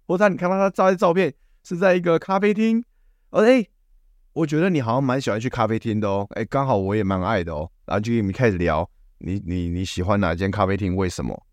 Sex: male